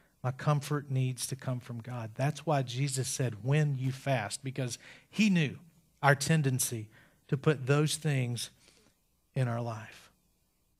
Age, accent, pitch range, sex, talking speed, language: 40-59, American, 130-165 Hz, male, 145 wpm, English